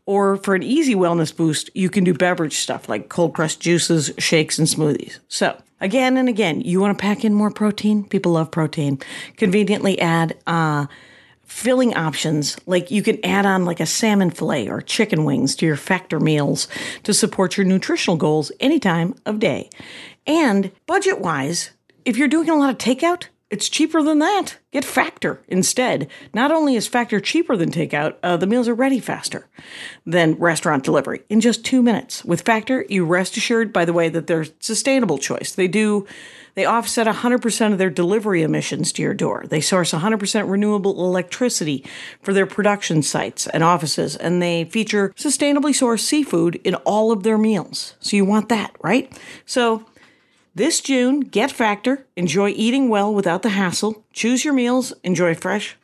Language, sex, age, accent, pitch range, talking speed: English, female, 50-69, American, 170-230 Hz, 175 wpm